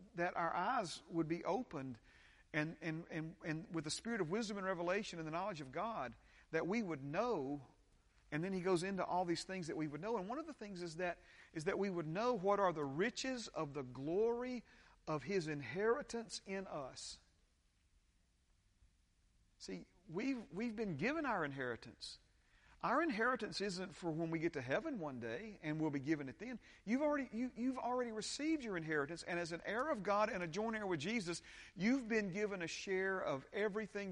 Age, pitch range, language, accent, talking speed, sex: 50-69, 135-210 Hz, English, American, 200 wpm, male